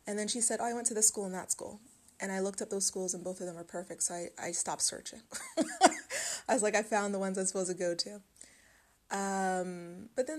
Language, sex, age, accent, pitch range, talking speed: English, female, 30-49, American, 185-215 Hz, 260 wpm